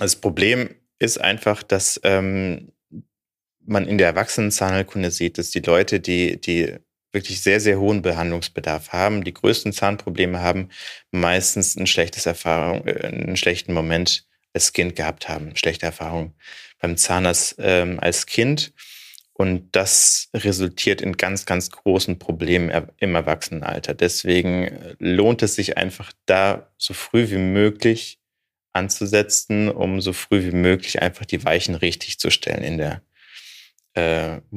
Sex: male